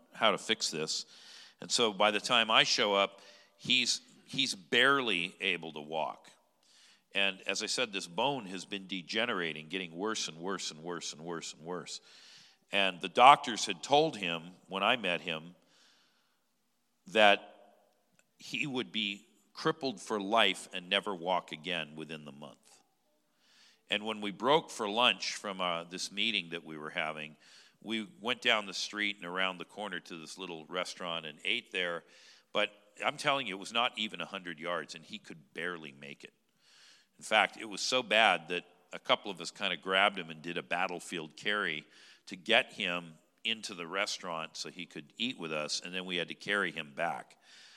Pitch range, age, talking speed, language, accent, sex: 85-105 Hz, 50-69, 185 wpm, English, American, male